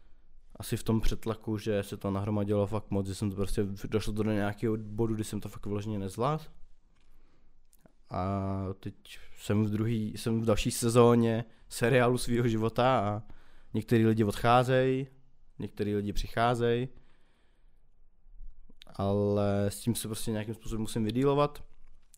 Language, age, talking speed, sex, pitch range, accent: Czech, 20-39, 140 wpm, male, 100-120 Hz, native